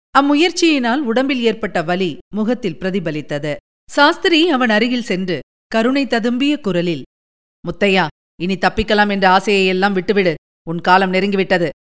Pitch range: 175-230 Hz